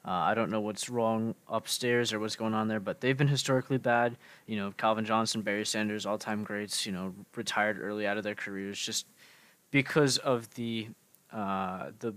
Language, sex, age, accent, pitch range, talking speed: English, male, 20-39, American, 110-130 Hz, 190 wpm